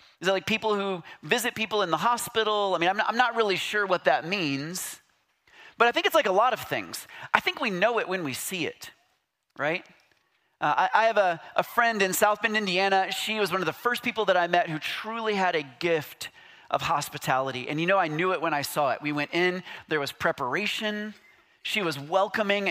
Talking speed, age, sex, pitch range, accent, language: 230 wpm, 30-49, male, 170-220 Hz, American, English